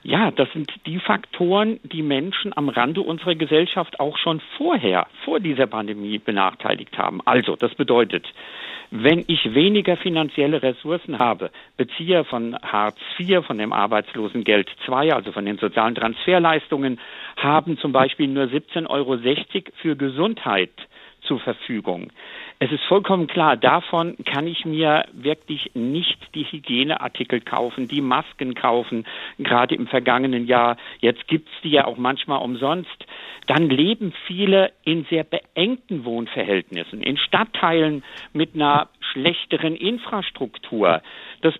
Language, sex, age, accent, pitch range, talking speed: German, male, 50-69, German, 130-180 Hz, 135 wpm